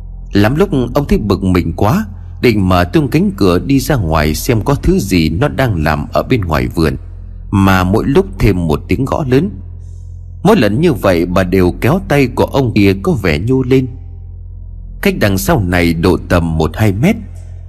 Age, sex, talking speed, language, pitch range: 30-49, male, 195 wpm, Vietnamese, 85-115 Hz